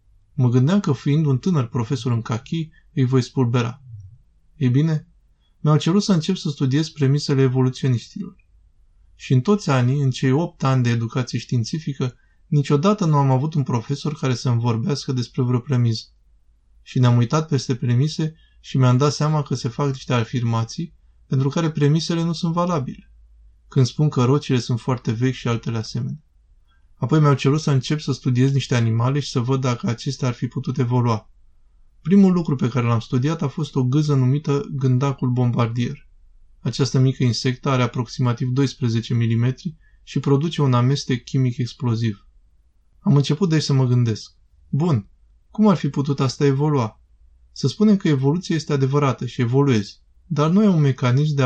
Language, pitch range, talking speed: Romanian, 120-145 Hz, 170 wpm